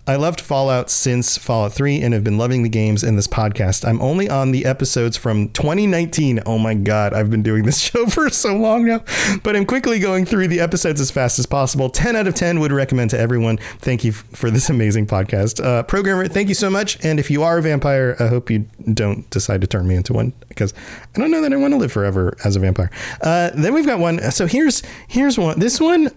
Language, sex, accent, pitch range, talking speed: English, male, American, 120-200 Hz, 240 wpm